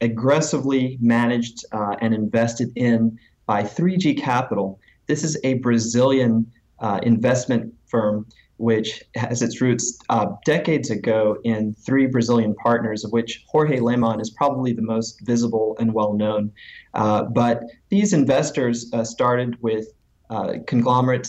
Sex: male